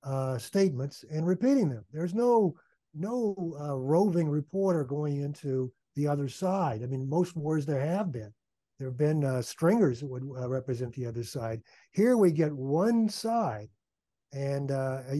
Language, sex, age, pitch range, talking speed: English, male, 60-79, 135-185 Hz, 165 wpm